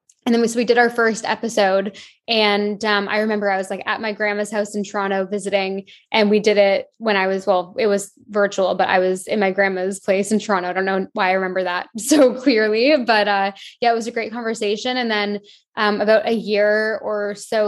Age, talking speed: 10-29, 230 wpm